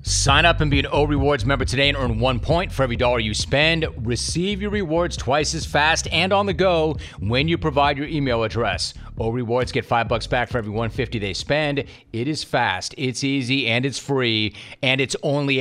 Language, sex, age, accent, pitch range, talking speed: English, male, 40-59, American, 120-150 Hz, 210 wpm